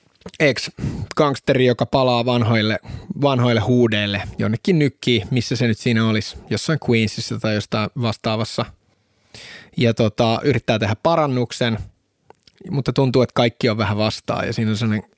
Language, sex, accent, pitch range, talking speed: Finnish, male, native, 110-135 Hz, 135 wpm